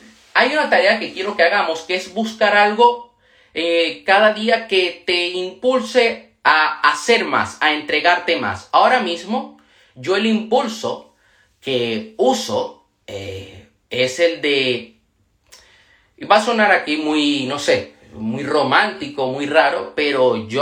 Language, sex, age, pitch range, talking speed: Spanish, male, 30-49, 115-170 Hz, 135 wpm